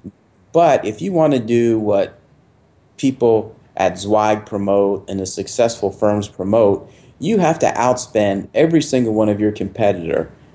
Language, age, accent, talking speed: English, 30-49, American, 150 wpm